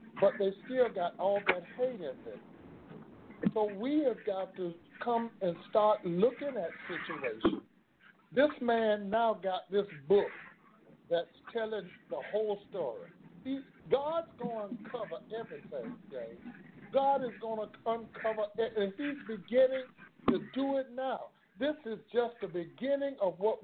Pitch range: 195-255 Hz